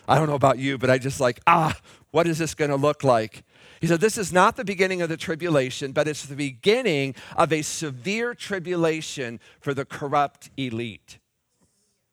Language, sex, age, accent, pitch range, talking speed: English, male, 50-69, American, 155-220 Hz, 190 wpm